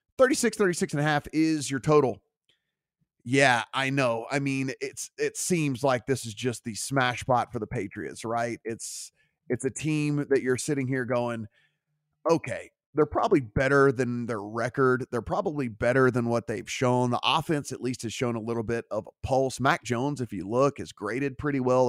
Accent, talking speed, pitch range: American, 195 wpm, 120-145 Hz